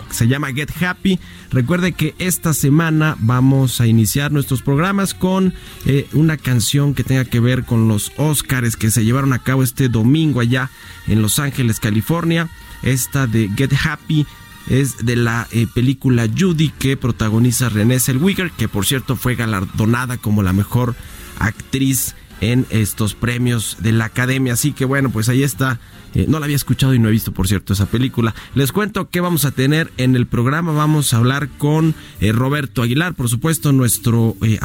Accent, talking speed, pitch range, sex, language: Mexican, 180 wpm, 110-140 Hz, male, Spanish